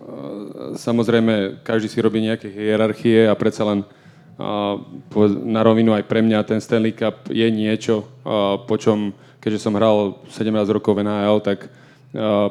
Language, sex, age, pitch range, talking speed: Slovak, male, 20-39, 105-115 Hz, 155 wpm